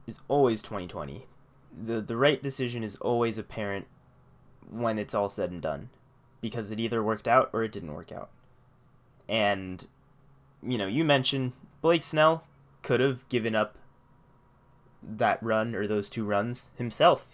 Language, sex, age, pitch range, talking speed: English, male, 20-39, 115-135 Hz, 150 wpm